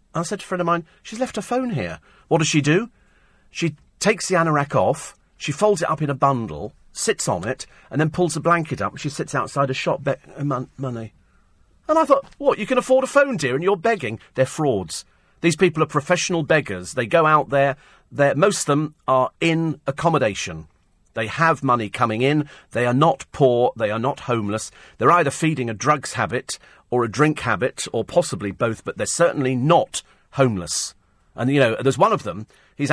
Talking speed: 210 wpm